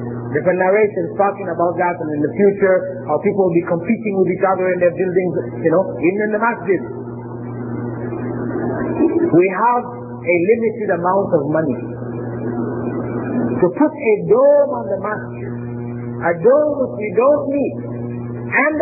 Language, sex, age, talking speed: English, male, 50-69, 155 wpm